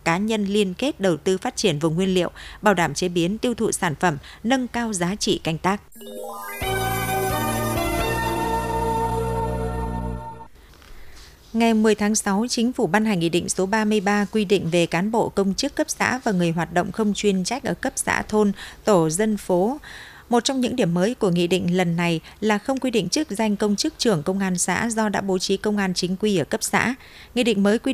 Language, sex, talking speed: Vietnamese, female, 210 wpm